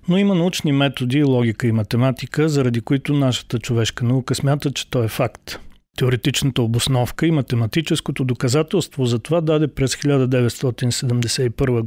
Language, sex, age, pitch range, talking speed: Bulgarian, male, 40-59, 120-140 Hz, 135 wpm